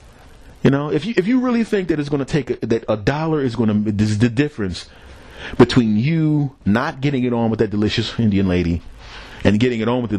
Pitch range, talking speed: 105-145 Hz, 240 wpm